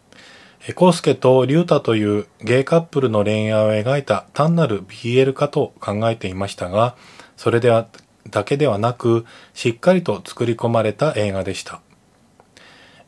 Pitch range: 100-140 Hz